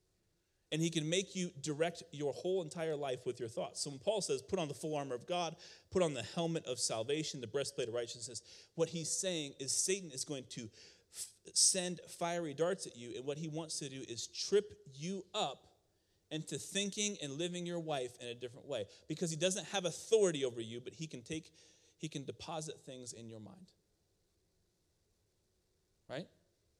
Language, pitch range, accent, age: English, 110-165 Hz, American, 40-59